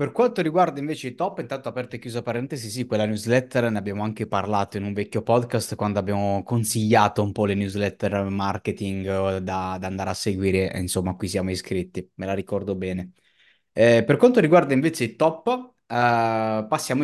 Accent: native